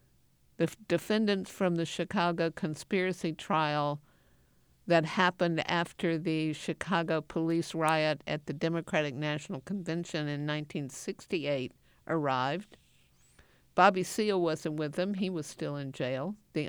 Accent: American